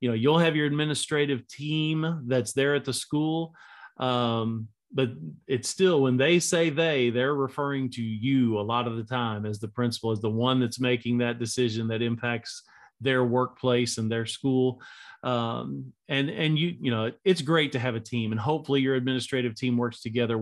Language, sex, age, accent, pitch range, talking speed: English, male, 40-59, American, 120-140 Hz, 190 wpm